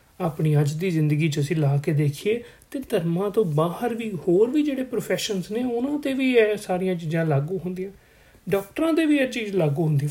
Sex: male